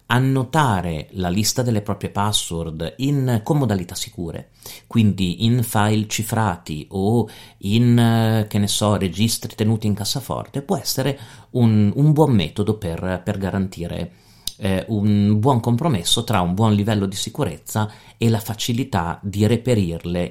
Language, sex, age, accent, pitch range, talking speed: Italian, male, 40-59, native, 95-115 Hz, 140 wpm